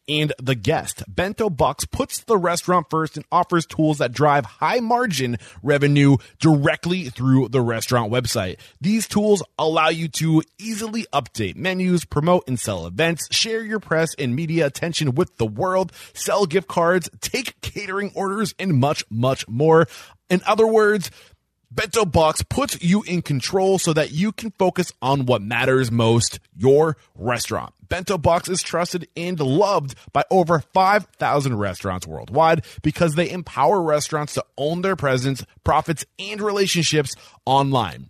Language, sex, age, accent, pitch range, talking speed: English, male, 20-39, American, 125-175 Hz, 150 wpm